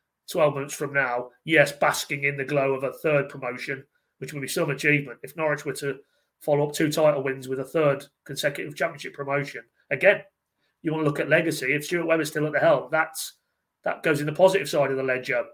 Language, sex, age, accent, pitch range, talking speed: English, male, 30-49, British, 140-160 Hz, 215 wpm